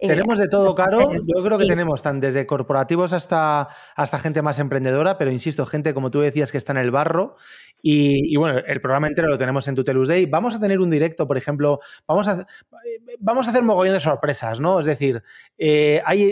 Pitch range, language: 140-175 Hz, Spanish